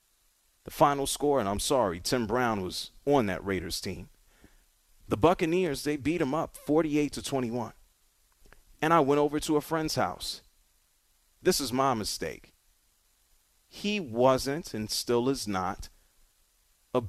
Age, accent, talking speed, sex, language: 30-49, American, 140 wpm, male, English